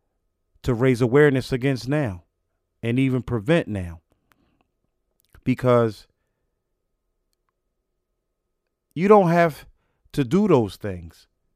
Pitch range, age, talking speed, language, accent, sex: 105-150 Hz, 40-59, 90 wpm, English, American, male